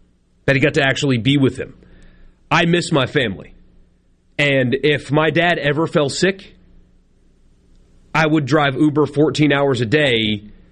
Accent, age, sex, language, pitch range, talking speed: American, 30-49, male, English, 105-150 Hz, 150 wpm